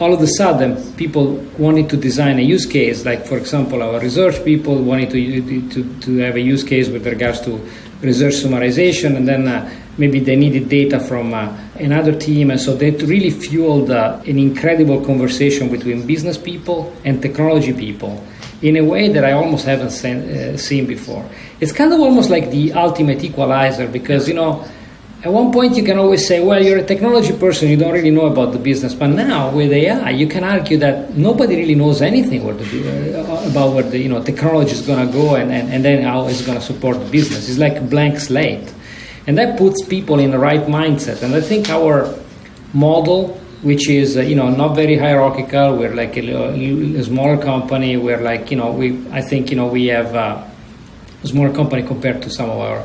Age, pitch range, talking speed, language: 40-59, 130-155 Hz, 205 wpm, English